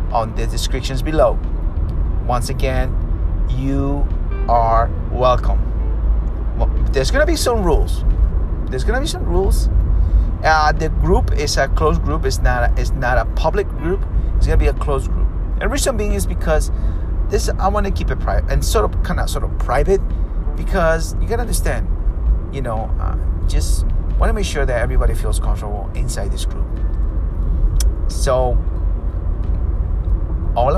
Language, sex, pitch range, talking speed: English, male, 80-90 Hz, 155 wpm